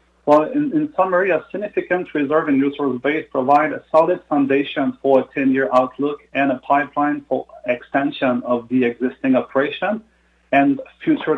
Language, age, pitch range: English, 40-59, 130-165 Hz